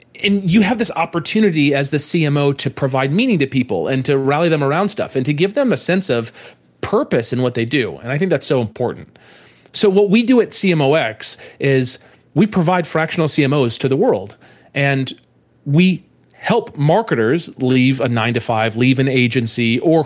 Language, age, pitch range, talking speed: English, 30-49, 125-160 Hz, 185 wpm